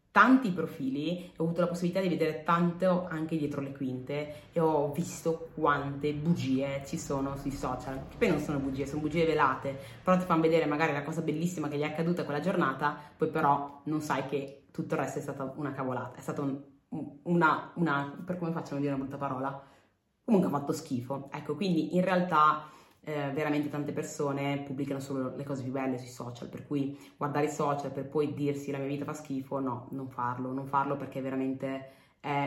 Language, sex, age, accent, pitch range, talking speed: Italian, female, 20-39, native, 140-160 Hz, 205 wpm